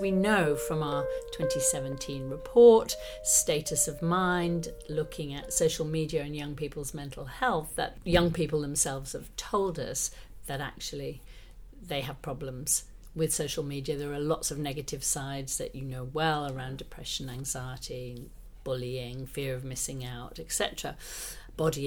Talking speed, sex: 145 wpm, female